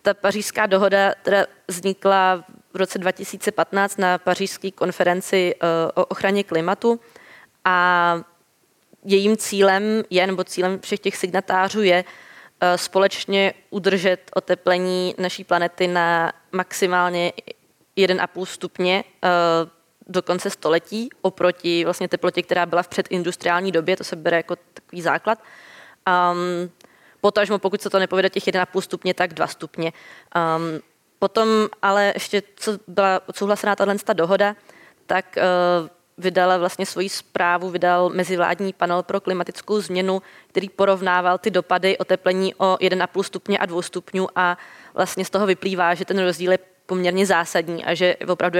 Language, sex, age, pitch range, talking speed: Czech, female, 20-39, 180-195 Hz, 140 wpm